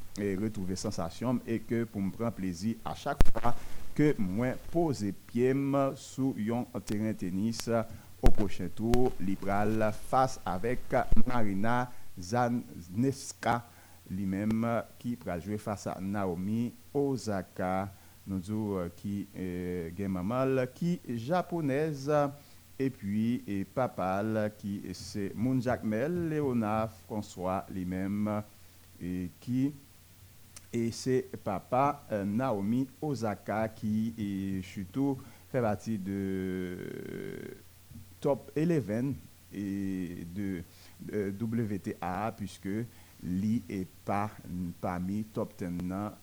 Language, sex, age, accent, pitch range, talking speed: French, male, 60-79, French, 95-120 Hz, 100 wpm